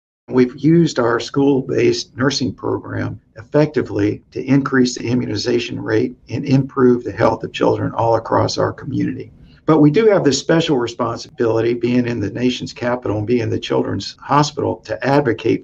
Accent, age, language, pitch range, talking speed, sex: American, 50-69, English, 110-140 Hz, 155 wpm, male